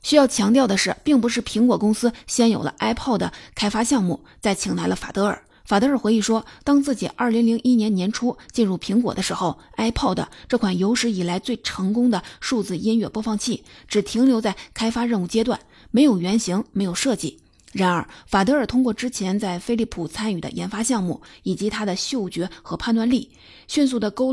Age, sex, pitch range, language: 30-49, female, 195-245 Hz, Chinese